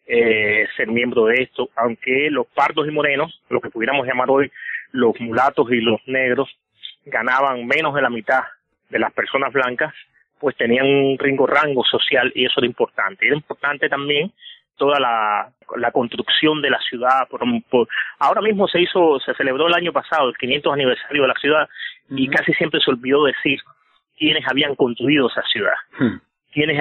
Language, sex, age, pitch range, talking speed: Spanish, male, 30-49, 125-170 Hz, 170 wpm